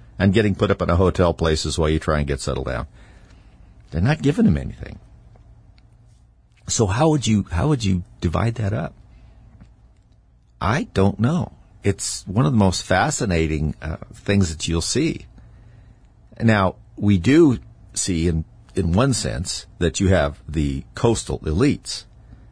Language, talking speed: English, 155 wpm